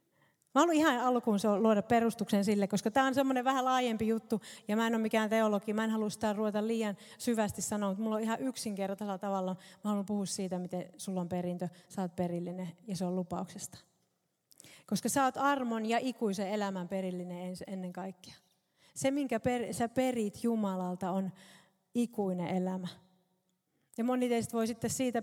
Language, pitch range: Finnish, 190-225 Hz